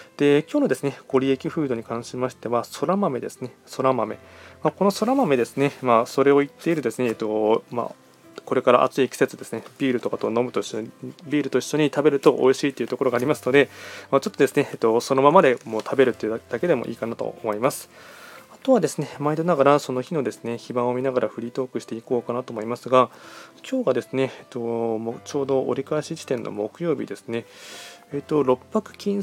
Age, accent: 20-39, native